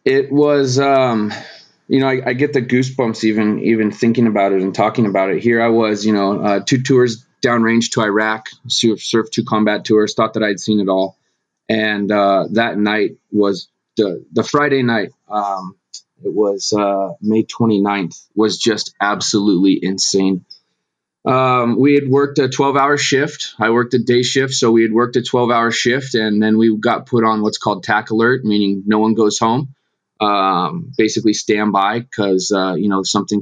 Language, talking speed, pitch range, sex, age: English, 185 wpm, 105-125 Hz, male, 30-49